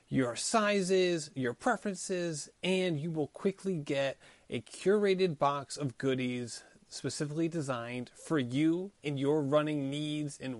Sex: male